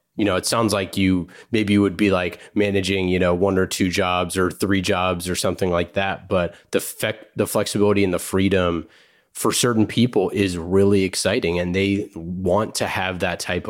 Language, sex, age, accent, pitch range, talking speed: English, male, 30-49, American, 90-105 Hz, 195 wpm